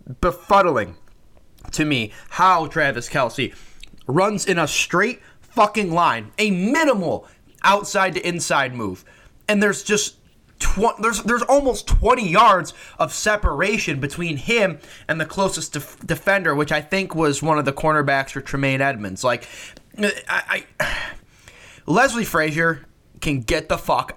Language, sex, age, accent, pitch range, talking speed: English, male, 20-39, American, 130-185 Hz, 135 wpm